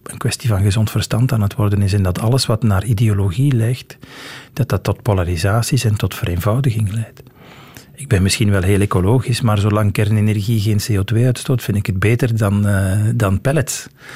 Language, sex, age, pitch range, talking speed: Dutch, male, 40-59, 105-125 Hz, 185 wpm